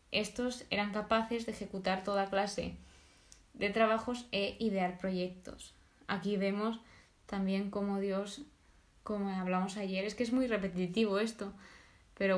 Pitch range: 195-225 Hz